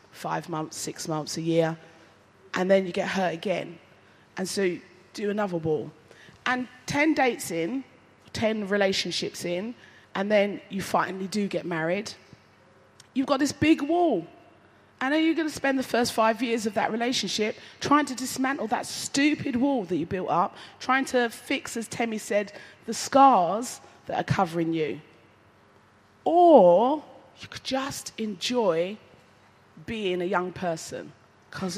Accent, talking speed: British, 155 wpm